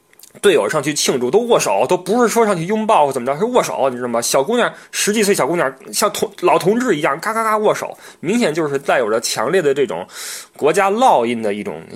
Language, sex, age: Chinese, male, 20-39